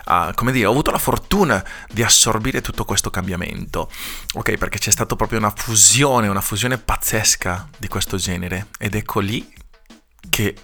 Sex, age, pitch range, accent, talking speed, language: male, 30-49, 95-115 Hz, native, 165 wpm, Italian